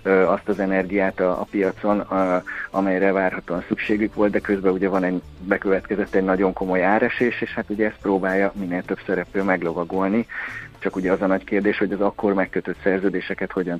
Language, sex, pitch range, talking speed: Hungarian, male, 95-110 Hz, 185 wpm